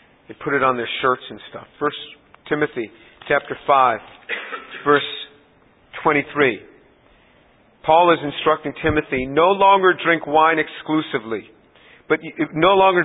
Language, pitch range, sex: English, 150-210 Hz, male